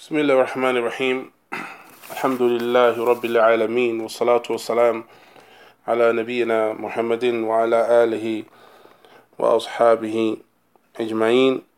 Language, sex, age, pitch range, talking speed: English, male, 20-39, 110-120 Hz, 85 wpm